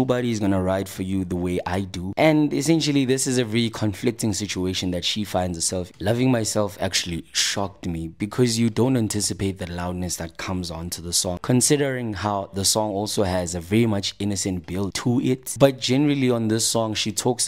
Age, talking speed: 20-39, 195 wpm